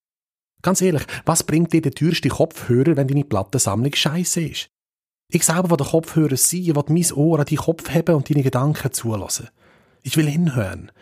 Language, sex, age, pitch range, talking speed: German, male, 30-49, 115-155 Hz, 190 wpm